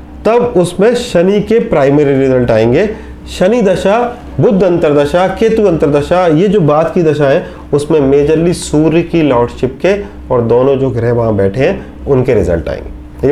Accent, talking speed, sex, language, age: native, 160 wpm, male, Hindi, 30-49